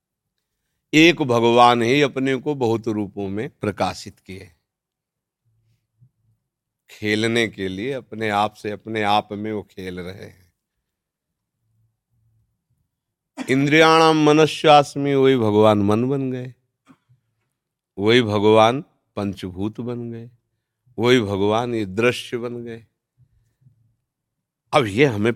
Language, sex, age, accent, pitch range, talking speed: Hindi, male, 50-69, native, 105-125 Hz, 105 wpm